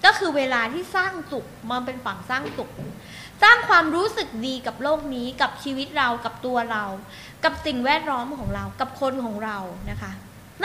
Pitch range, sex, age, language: 230-355 Hz, female, 20-39, Thai